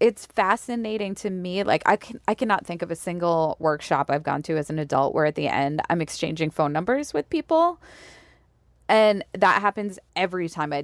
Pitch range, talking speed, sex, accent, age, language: 155-190 Hz, 200 wpm, female, American, 20-39, English